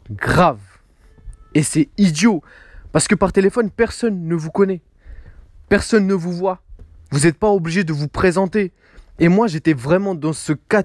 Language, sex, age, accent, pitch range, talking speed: French, male, 20-39, French, 145-210 Hz, 165 wpm